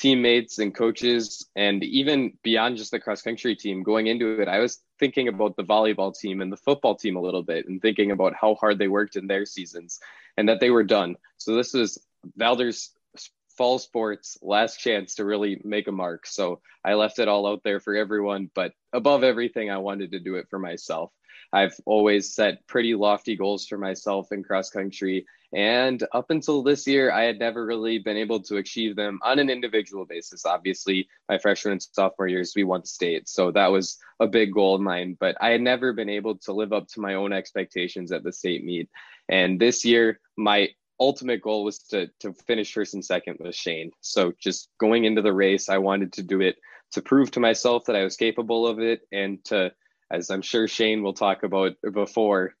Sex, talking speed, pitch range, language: male, 210 wpm, 95-115 Hz, English